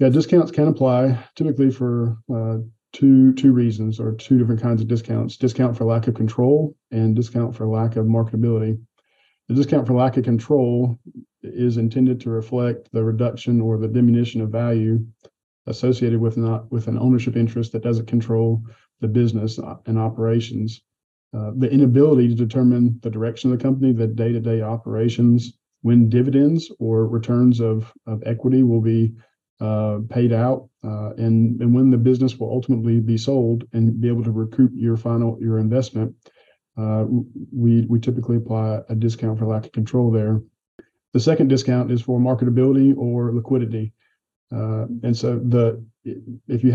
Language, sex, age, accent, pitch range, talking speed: English, male, 40-59, American, 115-125 Hz, 165 wpm